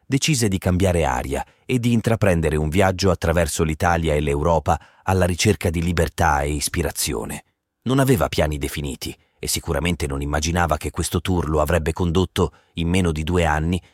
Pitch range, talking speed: 80-100 Hz, 165 wpm